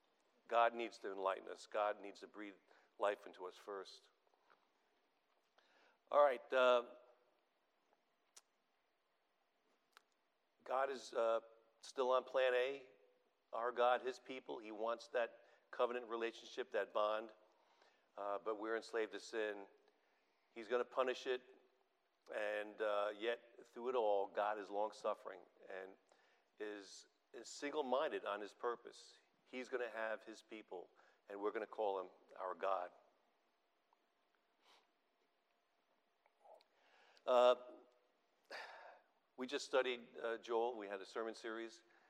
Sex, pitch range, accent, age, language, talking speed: male, 105-120 Hz, American, 50-69, English, 120 wpm